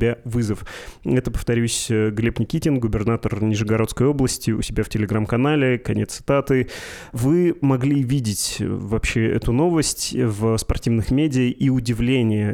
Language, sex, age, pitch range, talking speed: Russian, male, 20-39, 110-130 Hz, 120 wpm